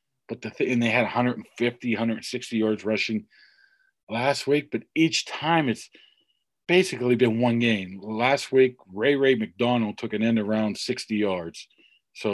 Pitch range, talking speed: 100-120 Hz, 140 wpm